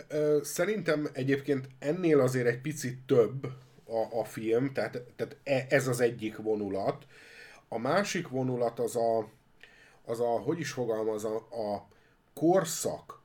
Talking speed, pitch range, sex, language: 130 wpm, 110-145 Hz, male, Hungarian